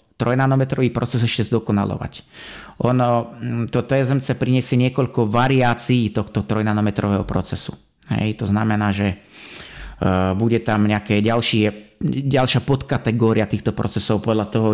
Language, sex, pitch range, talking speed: Slovak, male, 110-130 Hz, 105 wpm